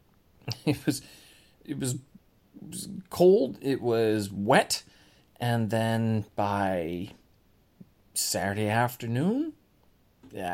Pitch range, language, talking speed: 100-125 Hz, English, 90 wpm